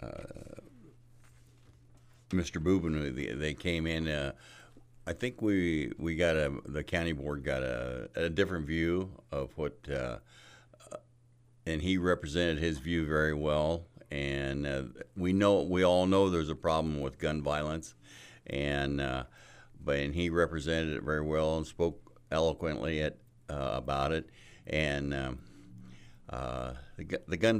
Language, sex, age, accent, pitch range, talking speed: English, male, 60-79, American, 70-90 Hz, 150 wpm